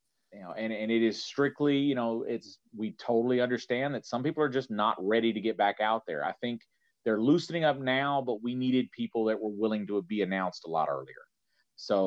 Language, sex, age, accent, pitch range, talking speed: English, male, 30-49, American, 100-120 Hz, 225 wpm